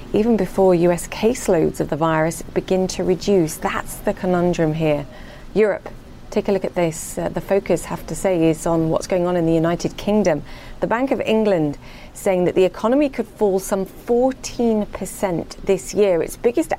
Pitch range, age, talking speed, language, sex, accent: 170-205 Hz, 30-49, 180 wpm, English, female, British